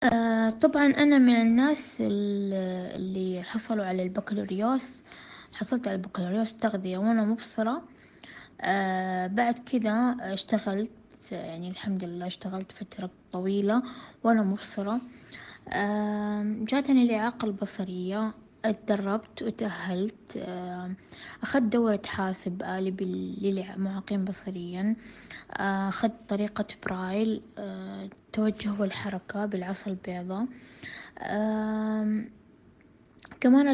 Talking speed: 85 wpm